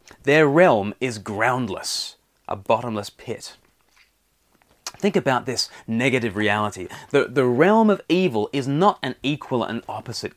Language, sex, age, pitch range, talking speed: English, male, 30-49, 115-160 Hz, 135 wpm